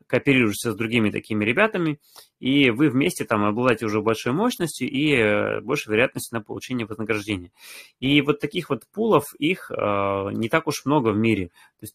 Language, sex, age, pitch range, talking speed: Russian, male, 20-39, 105-125 Hz, 170 wpm